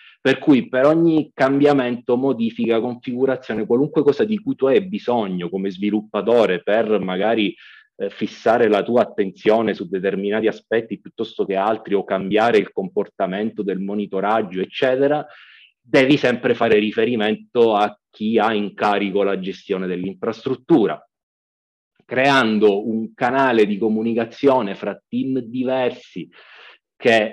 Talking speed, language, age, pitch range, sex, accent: 125 wpm, Italian, 30-49, 95-125 Hz, male, native